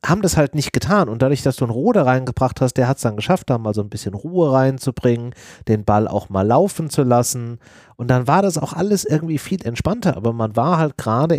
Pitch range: 115-140 Hz